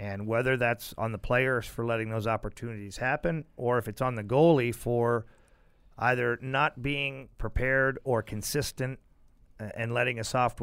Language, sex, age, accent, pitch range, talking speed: English, male, 40-59, American, 115-135 Hz, 160 wpm